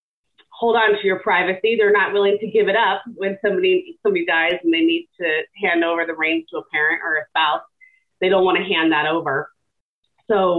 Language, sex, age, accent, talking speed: English, female, 30-49, American, 215 wpm